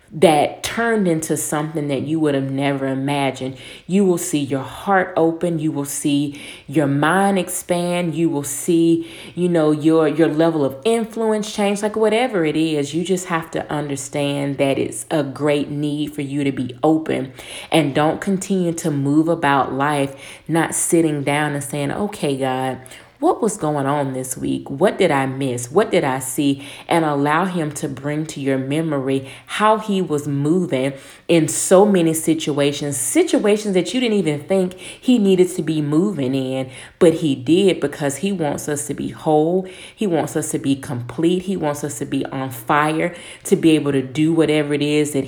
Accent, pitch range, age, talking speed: American, 140-170 Hz, 30-49, 185 wpm